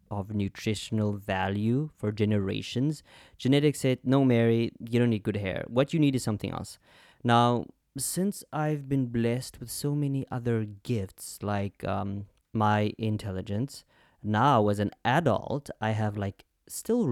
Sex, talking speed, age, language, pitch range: male, 145 wpm, 20-39, English, 100-125 Hz